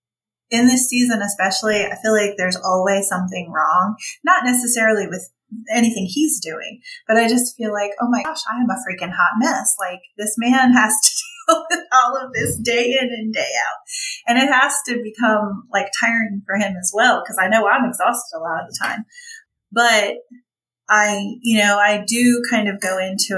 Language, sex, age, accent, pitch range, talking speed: English, female, 30-49, American, 190-245 Hz, 195 wpm